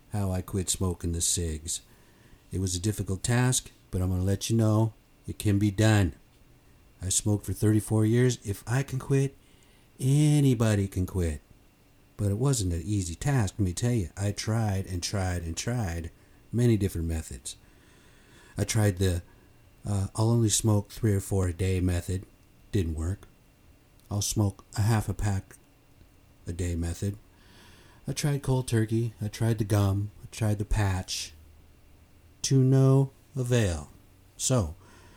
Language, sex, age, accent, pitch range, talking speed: English, male, 50-69, American, 95-115 Hz, 160 wpm